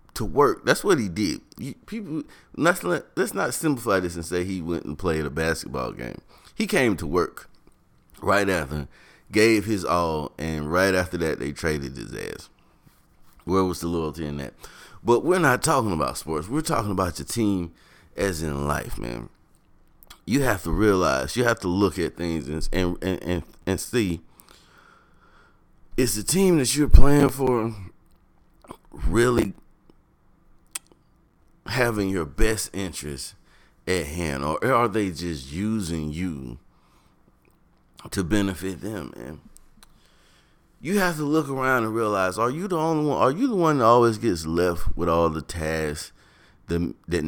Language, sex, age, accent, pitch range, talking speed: English, male, 30-49, American, 80-105 Hz, 155 wpm